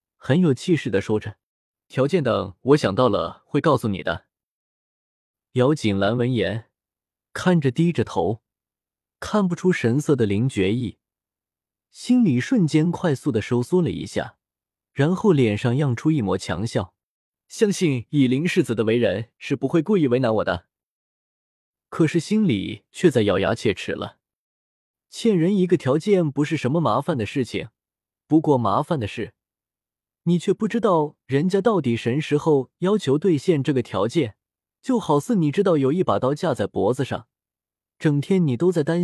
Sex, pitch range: male, 110-170 Hz